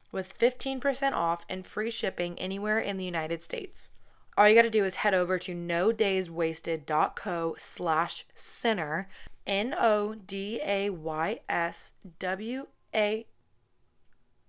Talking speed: 100 wpm